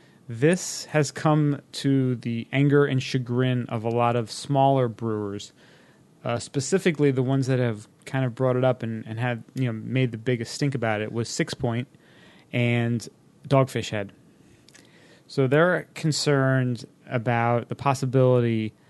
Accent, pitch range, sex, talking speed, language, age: American, 120-145 Hz, male, 150 wpm, English, 30-49